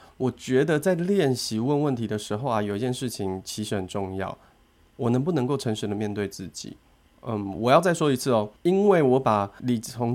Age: 20-39